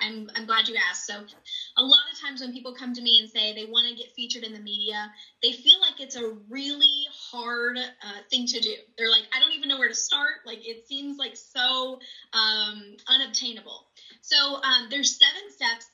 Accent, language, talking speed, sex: American, English, 215 wpm, female